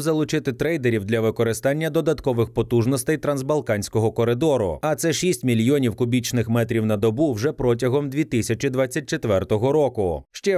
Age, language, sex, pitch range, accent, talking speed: 30-49, Ukrainian, male, 115-145 Hz, native, 120 wpm